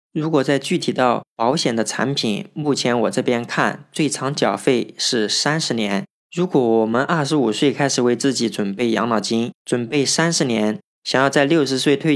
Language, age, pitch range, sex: Chinese, 20-39, 115-140 Hz, male